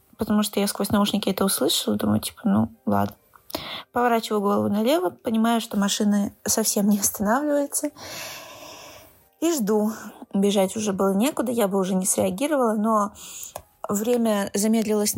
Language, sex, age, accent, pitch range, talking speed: Russian, female, 20-39, native, 205-240 Hz, 135 wpm